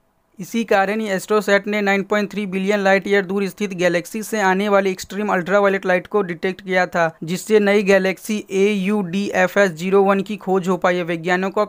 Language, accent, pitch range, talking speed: Hindi, native, 185-205 Hz, 185 wpm